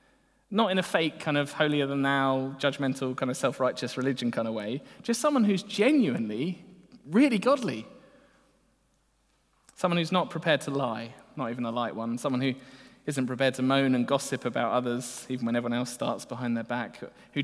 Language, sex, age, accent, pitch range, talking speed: English, male, 20-39, British, 125-165 Hz, 175 wpm